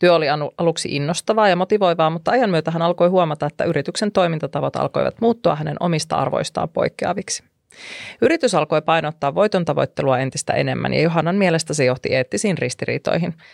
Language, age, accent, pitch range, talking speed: Finnish, 30-49, native, 145-185 Hz, 155 wpm